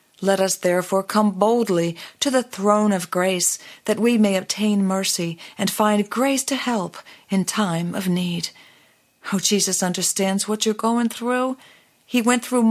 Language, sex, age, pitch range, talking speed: English, female, 40-59, 180-245 Hz, 160 wpm